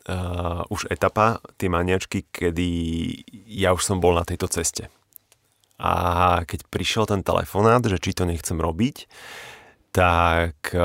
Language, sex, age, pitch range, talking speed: Slovak, male, 30-49, 85-95 Hz, 135 wpm